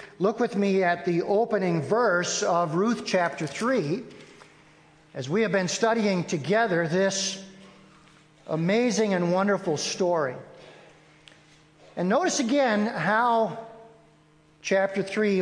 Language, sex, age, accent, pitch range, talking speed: English, male, 50-69, American, 180-225 Hz, 110 wpm